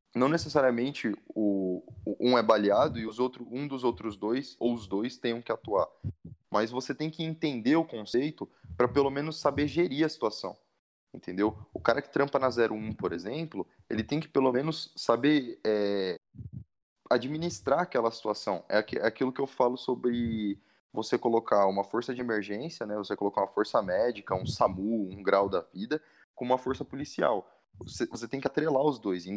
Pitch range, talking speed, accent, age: 110-145 Hz, 180 wpm, Brazilian, 20-39